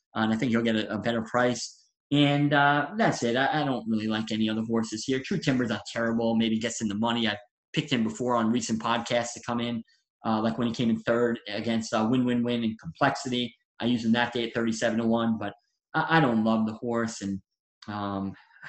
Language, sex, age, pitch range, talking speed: English, male, 20-39, 110-130 Hz, 240 wpm